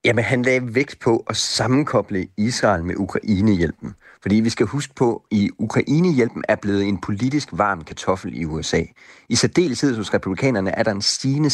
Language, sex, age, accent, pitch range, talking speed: Danish, male, 30-49, native, 95-130 Hz, 170 wpm